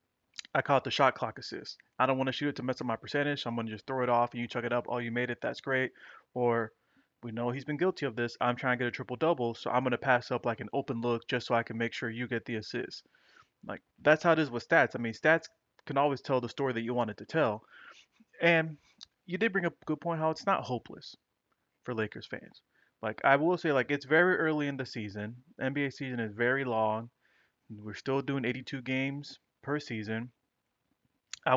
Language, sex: English, male